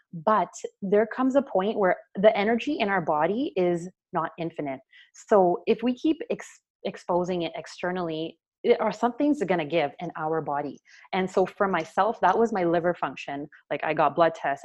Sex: female